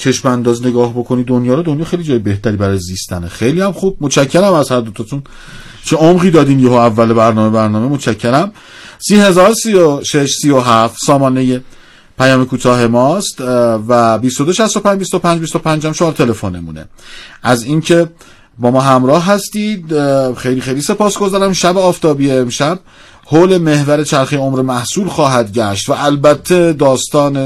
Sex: male